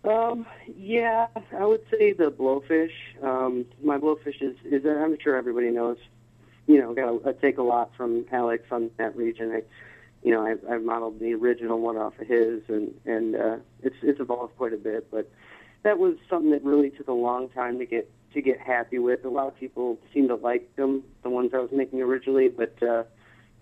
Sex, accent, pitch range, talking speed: male, American, 115-130 Hz, 205 wpm